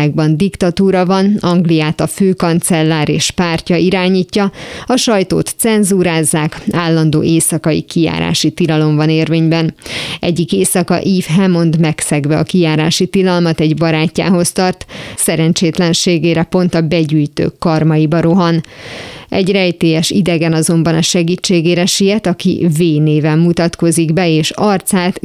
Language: Hungarian